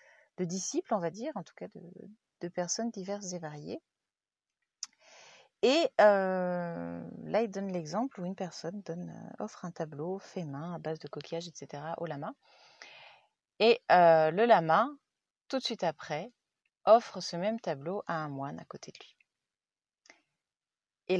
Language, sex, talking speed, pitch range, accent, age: French, female, 160 wpm, 165-225 Hz, French, 30-49